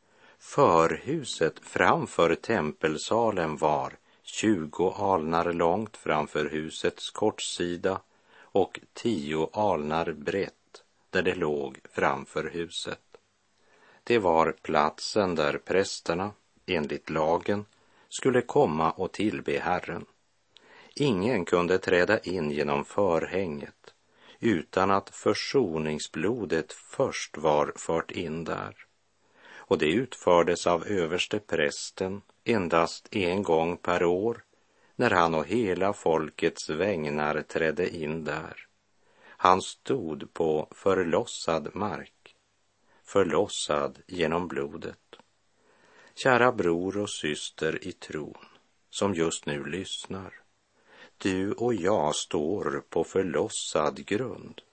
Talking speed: 100 wpm